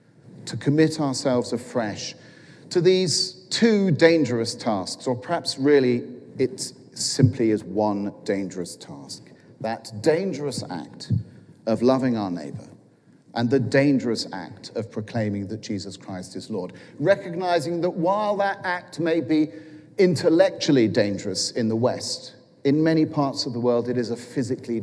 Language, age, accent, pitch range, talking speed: English, 40-59, British, 110-155 Hz, 140 wpm